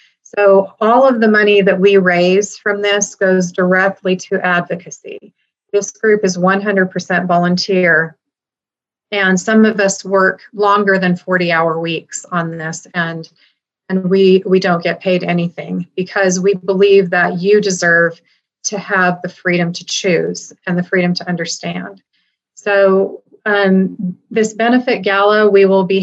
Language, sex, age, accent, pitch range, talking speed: English, female, 30-49, American, 180-200 Hz, 150 wpm